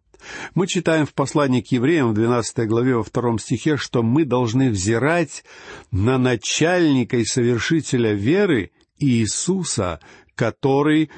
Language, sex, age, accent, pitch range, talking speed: Russian, male, 50-69, native, 110-155 Hz, 125 wpm